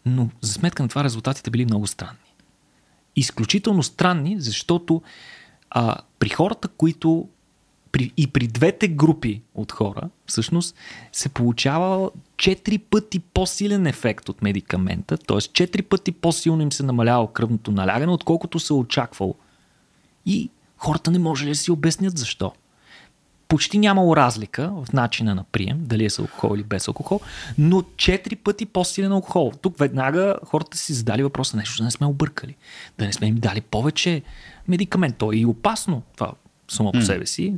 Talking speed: 155 wpm